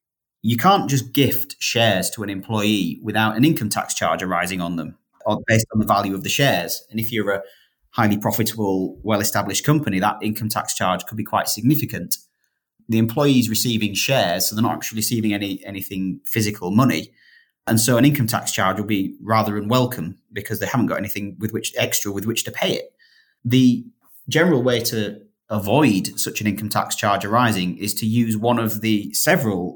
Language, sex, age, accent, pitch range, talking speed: English, male, 30-49, British, 100-115 Hz, 190 wpm